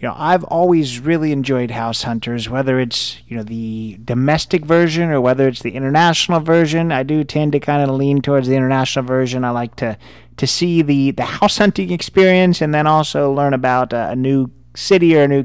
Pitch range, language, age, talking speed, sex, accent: 120-150 Hz, English, 30-49, 210 wpm, male, American